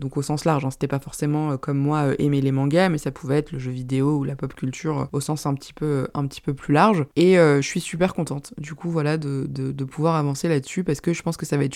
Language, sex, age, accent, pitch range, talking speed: French, female, 20-39, French, 140-165 Hz, 305 wpm